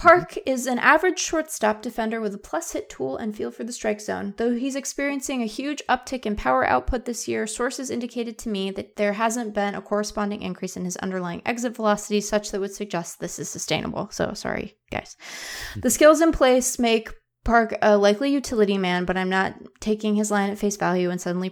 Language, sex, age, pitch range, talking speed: English, female, 20-39, 185-240 Hz, 210 wpm